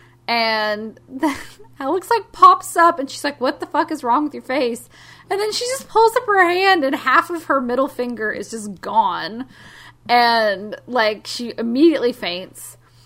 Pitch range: 205-280 Hz